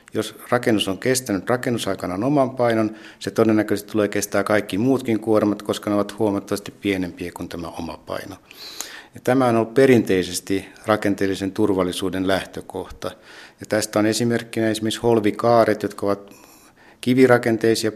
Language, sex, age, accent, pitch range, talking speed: Finnish, male, 60-79, native, 100-115 Hz, 130 wpm